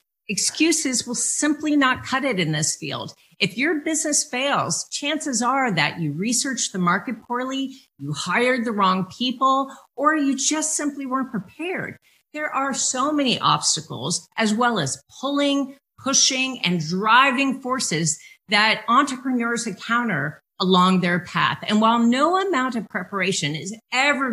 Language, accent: English, American